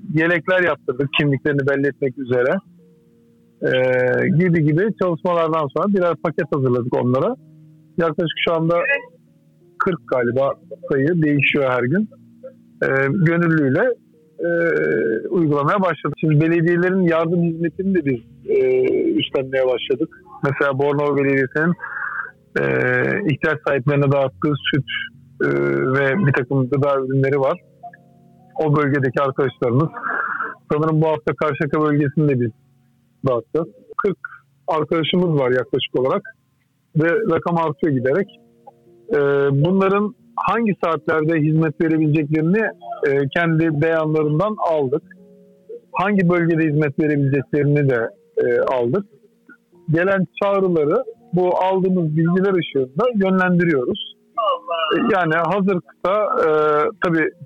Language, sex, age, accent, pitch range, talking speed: Turkish, male, 50-69, native, 140-185 Hz, 100 wpm